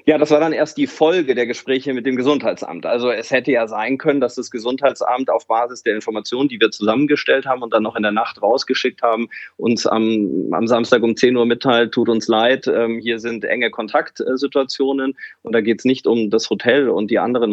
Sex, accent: male, German